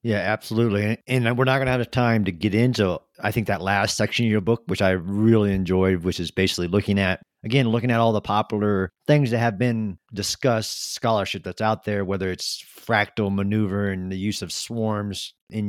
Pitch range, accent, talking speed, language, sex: 100-120 Hz, American, 210 wpm, English, male